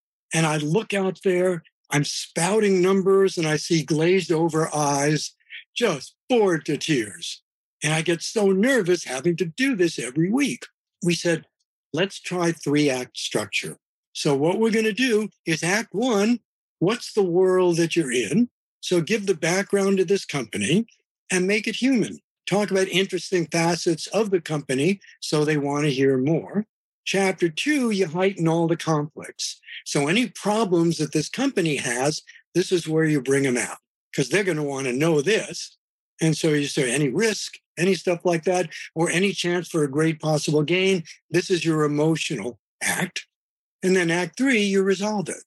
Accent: American